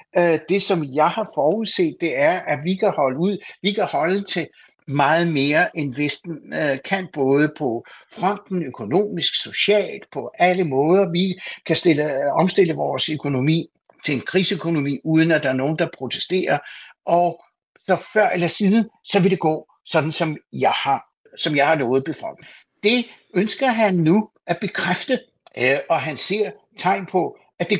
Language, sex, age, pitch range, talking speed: Danish, male, 60-79, 145-190 Hz, 160 wpm